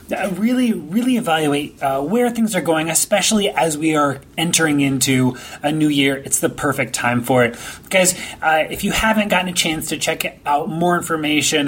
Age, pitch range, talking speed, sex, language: 30-49, 140-185 Hz, 190 wpm, male, English